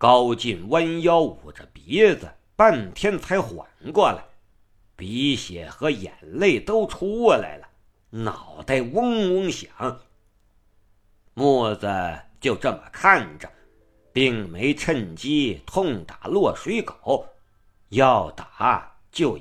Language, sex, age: Chinese, male, 50-69